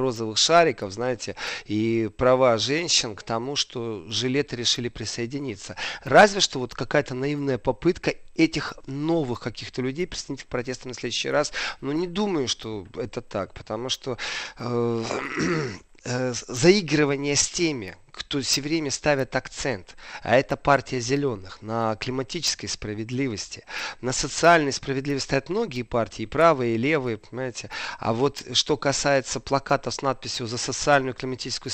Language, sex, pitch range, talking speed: Russian, male, 120-145 Hz, 140 wpm